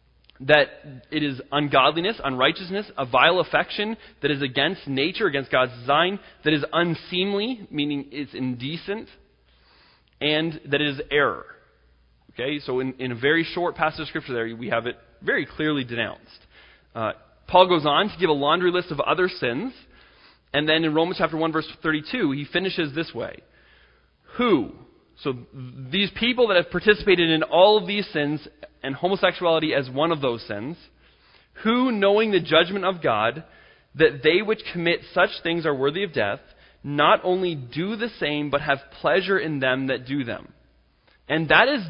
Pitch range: 140-185 Hz